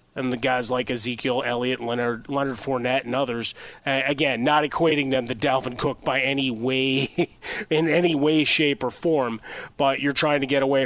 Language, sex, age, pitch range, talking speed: English, male, 30-49, 125-145 Hz, 190 wpm